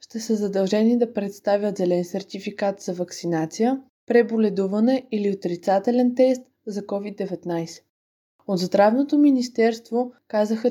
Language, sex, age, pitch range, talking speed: Bulgarian, female, 20-39, 200-240 Hz, 105 wpm